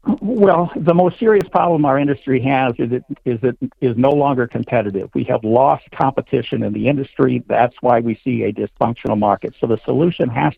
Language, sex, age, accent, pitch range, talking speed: English, male, 60-79, American, 120-150 Hz, 185 wpm